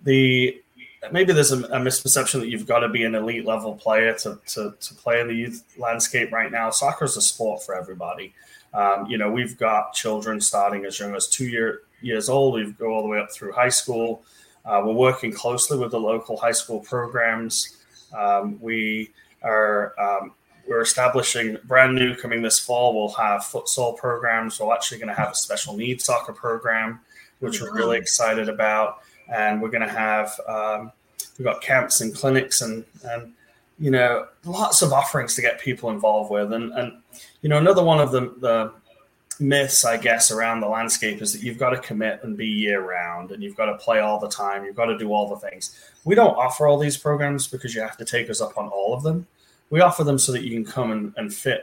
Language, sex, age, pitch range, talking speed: English, male, 20-39, 110-125 Hz, 215 wpm